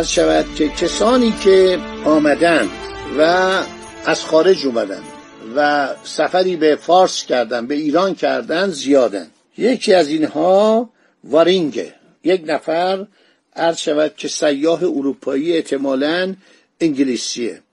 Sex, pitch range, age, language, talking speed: male, 160-220 Hz, 60-79, Persian, 100 wpm